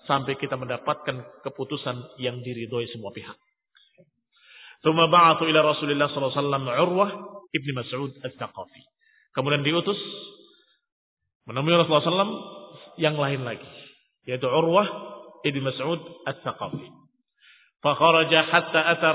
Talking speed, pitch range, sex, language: 105 wpm, 140-175 Hz, male, Indonesian